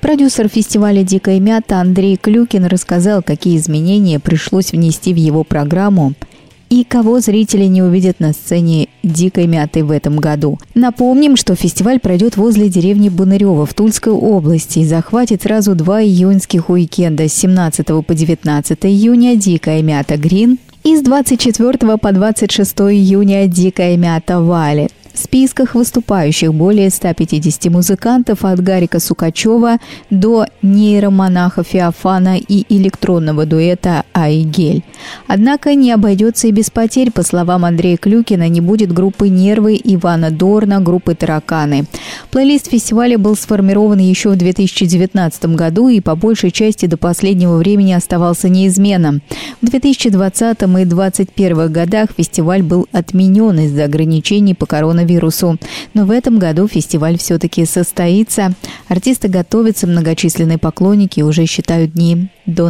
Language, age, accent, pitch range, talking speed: Russian, 20-39, native, 165-210 Hz, 140 wpm